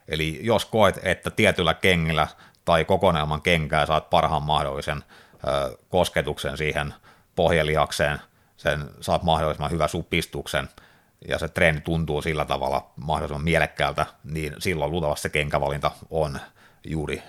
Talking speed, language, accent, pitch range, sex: 120 wpm, Finnish, native, 75-85 Hz, male